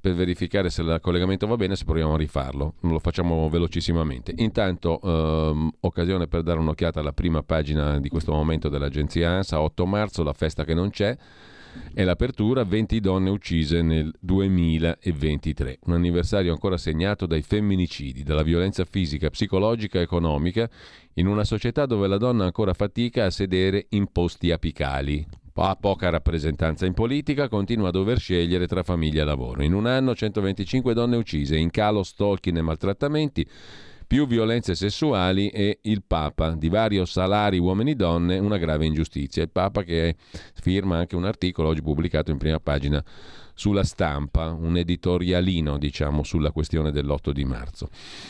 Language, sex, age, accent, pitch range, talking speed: Italian, male, 40-59, native, 80-100 Hz, 160 wpm